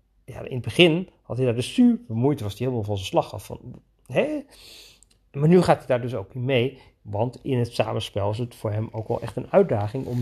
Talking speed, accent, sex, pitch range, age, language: 235 wpm, Dutch, male, 115-155 Hz, 40-59, Dutch